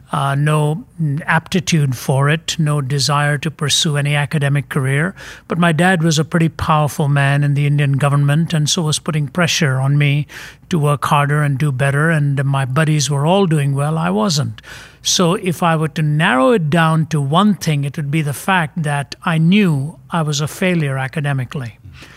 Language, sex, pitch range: English, male, 145-175 Hz